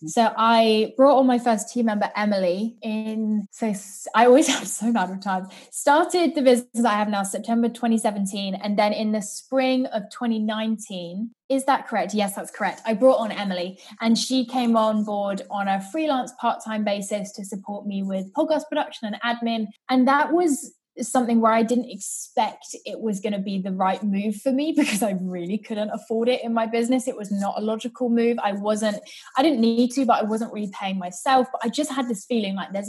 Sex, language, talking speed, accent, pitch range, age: female, English, 210 wpm, British, 200-245 Hz, 20-39